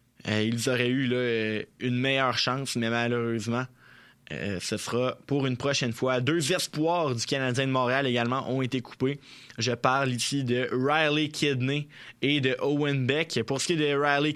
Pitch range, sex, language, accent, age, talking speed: 120-140 Hz, male, French, Canadian, 20-39, 170 wpm